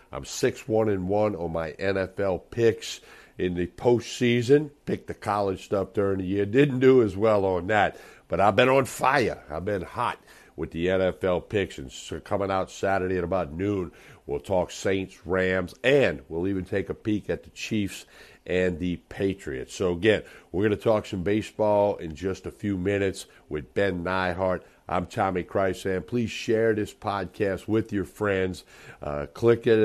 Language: English